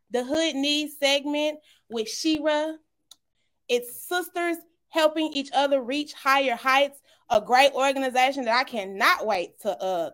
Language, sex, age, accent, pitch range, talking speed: English, female, 20-39, American, 240-320 Hz, 135 wpm